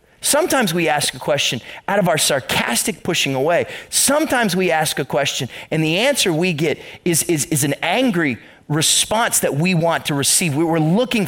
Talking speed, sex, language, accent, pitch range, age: 180 wpm, male, English, American, 150-220 Hz, 30-49